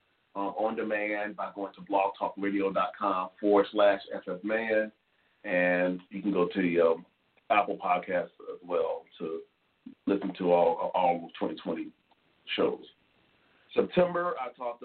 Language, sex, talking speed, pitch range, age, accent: English, male, 120 wpm, 100-130 Hz, 40-59, American